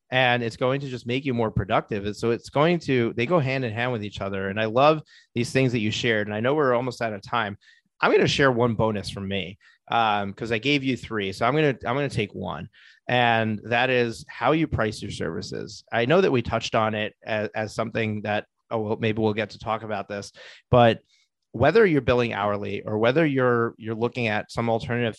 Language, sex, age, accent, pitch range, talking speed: English, male, 30-49, American, 105-125 Hz, 240 wpm